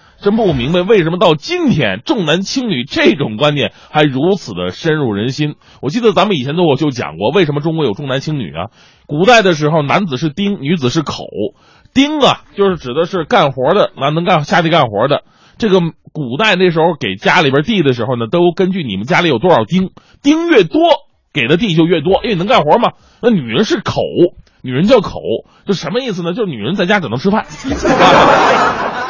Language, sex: Chinese, male